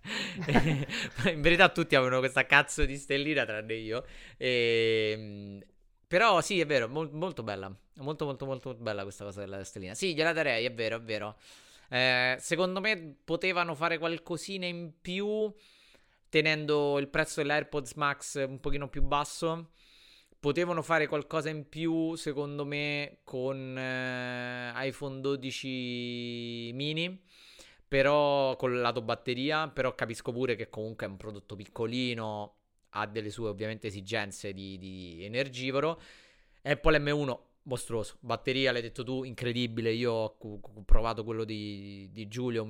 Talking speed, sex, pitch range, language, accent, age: 140 wpm, male, 110-150 Hz, Italian, native, 30-49